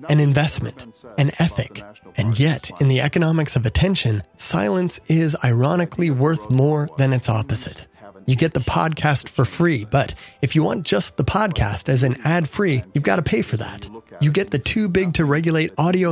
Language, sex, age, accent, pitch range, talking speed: English, male, 30-49, American, 125-160 Hz, 175 wpm